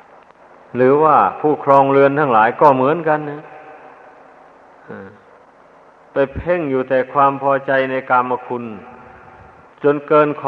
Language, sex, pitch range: Thai, male, 125-150 Hz